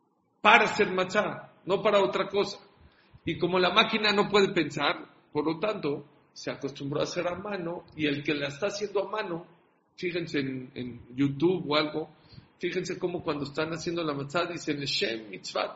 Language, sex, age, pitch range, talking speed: English, male, 40-59, 140-190 Hz, 175 wpm